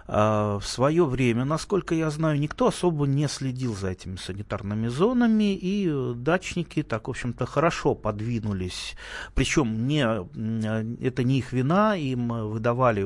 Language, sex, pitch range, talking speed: Russian, male, 105-145 Hz, 140 wpm